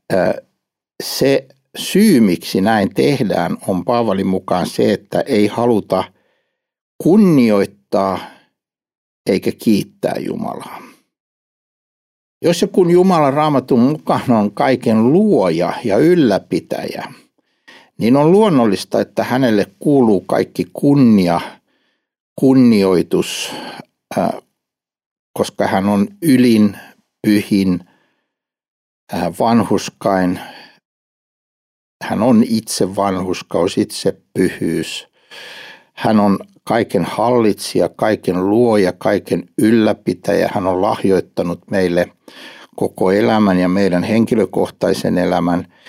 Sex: male